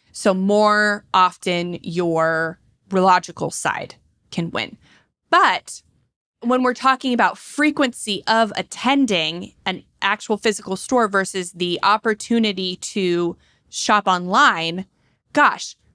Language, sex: English, female